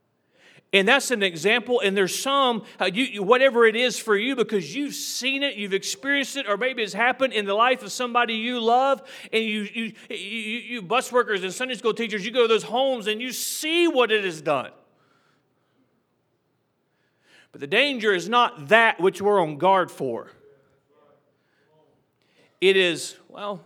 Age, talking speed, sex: 40-59, 180 wpm, male